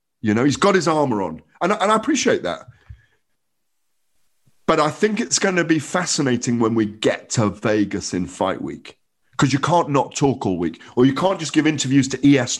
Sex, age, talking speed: male, 50-69, 210 wpm